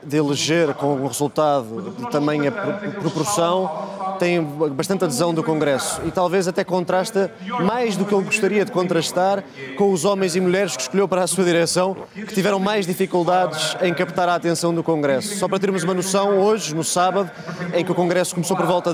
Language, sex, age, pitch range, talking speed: Portuguese, male, 20-39, 175-205 Hz, 195 wpm